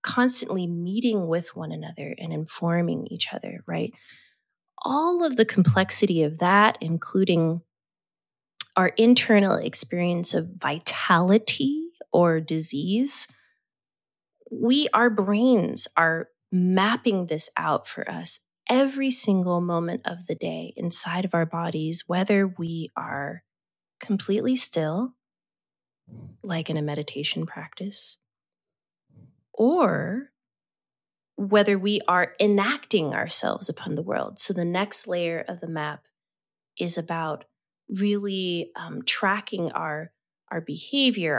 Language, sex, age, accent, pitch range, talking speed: English, female, 20-39, American, 165-220 Hz, 110 wpm